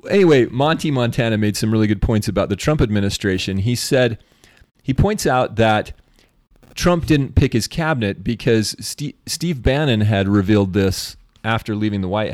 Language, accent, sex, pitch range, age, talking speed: English, American, male, 100-125 Hz, 30-49, 165 wpm